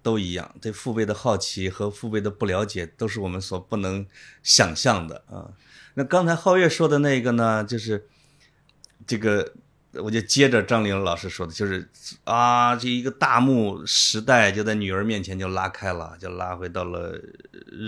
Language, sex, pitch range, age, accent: Chinese, male, 95-120 Hz, 20-39, native